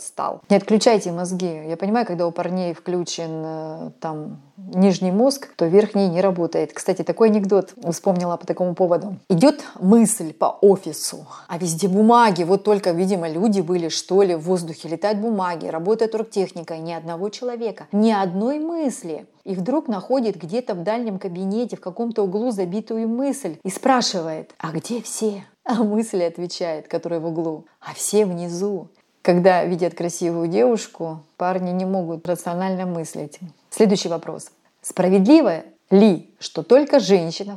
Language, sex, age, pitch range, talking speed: Russian, female, 30-49, 170-210 Hz, 145 wpm